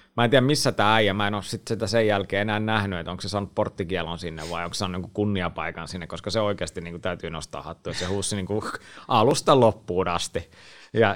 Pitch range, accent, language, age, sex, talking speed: 90-110 Hz, native, Finnish, 30-49, male, 225 wpm